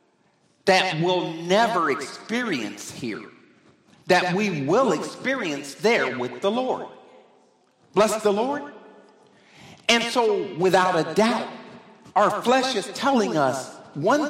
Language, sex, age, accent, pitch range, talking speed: English, male, 50-69, American, 210-275 Hz, 115 wpm